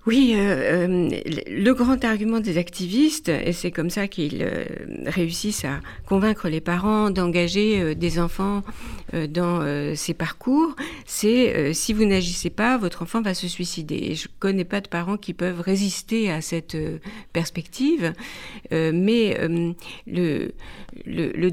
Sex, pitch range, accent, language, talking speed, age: female, 170-220 Hz, French, French, 165 wpm, 50-69